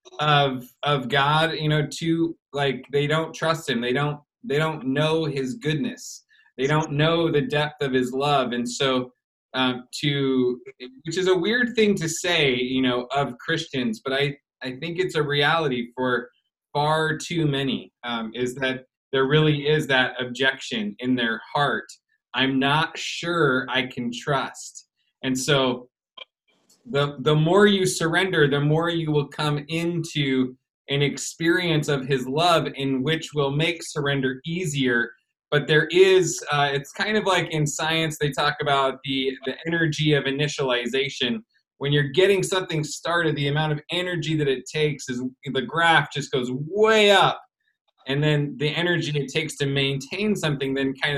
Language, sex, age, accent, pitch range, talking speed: English, male, 20-39, American, 130-160 Hz, 165 wpm